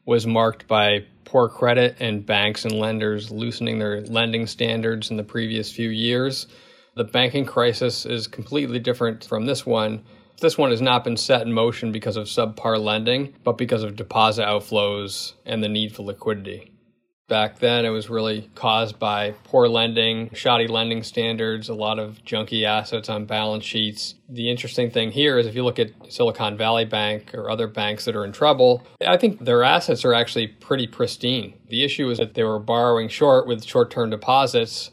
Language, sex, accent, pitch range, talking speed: English, male, American, 110-120 Hz, 185 wpm